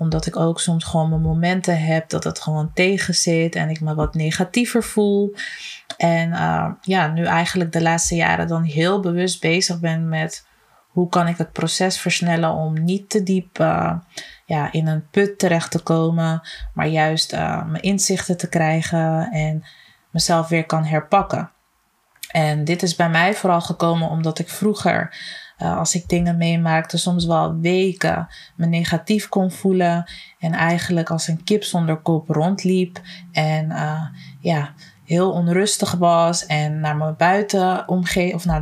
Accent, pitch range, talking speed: Dutch, 160-180 Hz, 155 wpm